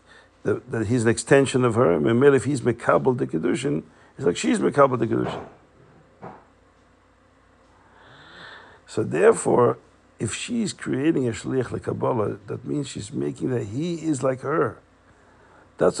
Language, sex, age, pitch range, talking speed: English, male, 50-69, 105-130 Hz, 140 wpm